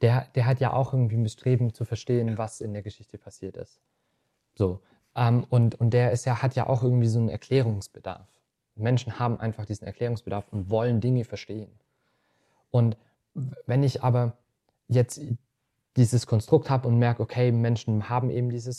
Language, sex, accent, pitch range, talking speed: German, male, German, 110-125 Hz, 170 wpm